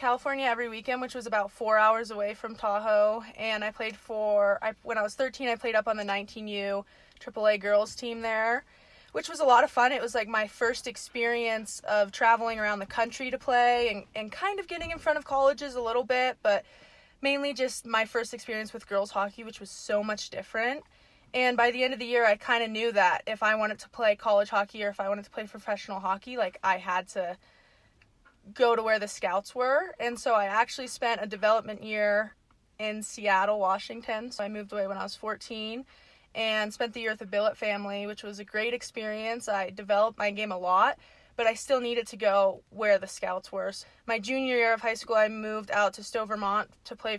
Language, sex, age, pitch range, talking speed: English, female, 20-39, 210-240 Hz, 220 wpm